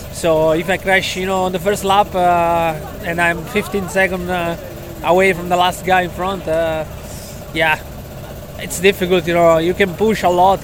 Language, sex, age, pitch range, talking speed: English, male, 20-39, 155-185 Hz, 190 wpm